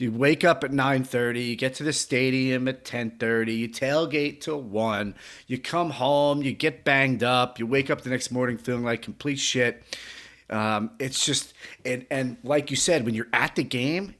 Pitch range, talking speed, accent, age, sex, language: 120-155 Hz, 205 wpm, American, 30-49, male, English